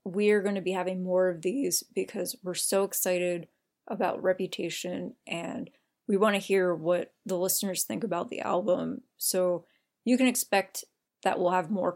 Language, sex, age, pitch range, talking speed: English, female, 20-39, 185-235 Hz, 170 wpm